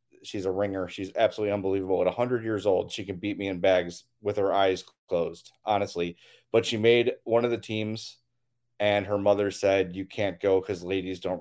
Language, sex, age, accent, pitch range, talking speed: English, male, 30-49, American, 95-120 Hz, 200 wpm